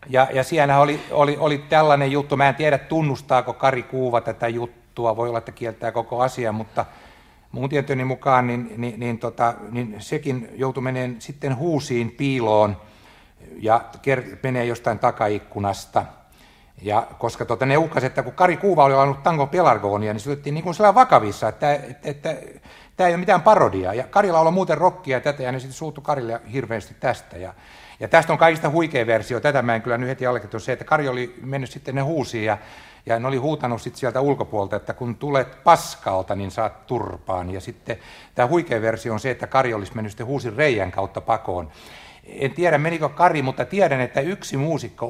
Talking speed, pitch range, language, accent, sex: 190 wpm, 110-140 Hz, Finnish, native, male